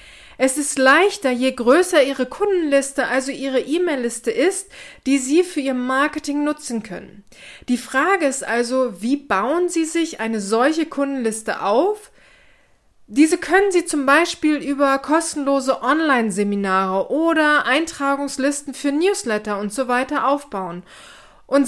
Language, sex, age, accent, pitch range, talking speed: German, female, 30-49, German, 245-300 Hz, 130 wpm